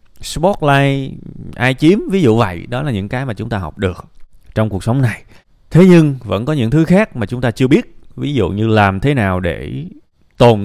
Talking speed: 220 wpm